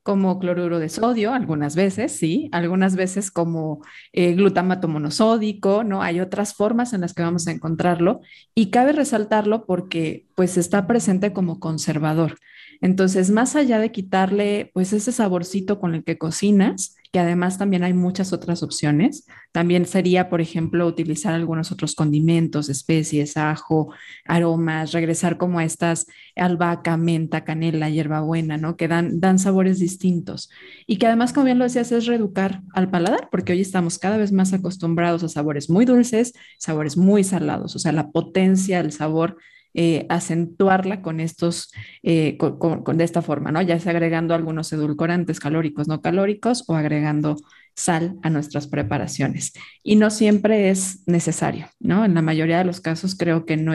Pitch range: 160-195 Hz